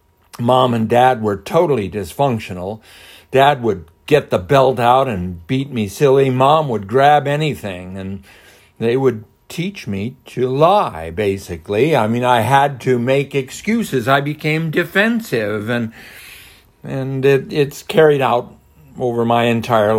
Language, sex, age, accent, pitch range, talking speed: English, male, 60-79, American, 105-145 Hz, 140 wpm